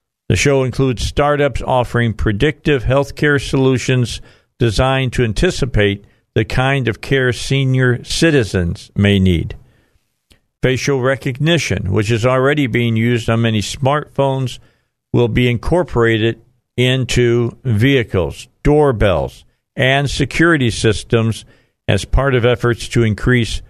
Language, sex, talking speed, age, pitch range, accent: English, male, 110 wpm, 50-69, 110-135 Hz, American